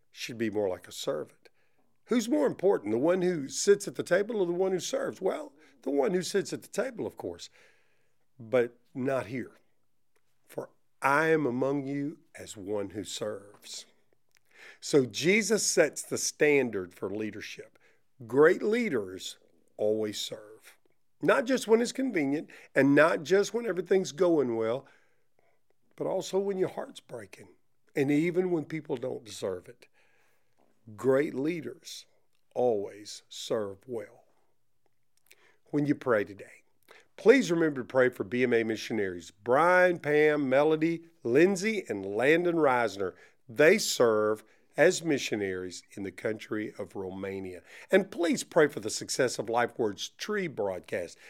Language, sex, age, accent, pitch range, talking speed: English, male, 50-69, American, 115-185 Hz, 140 wpm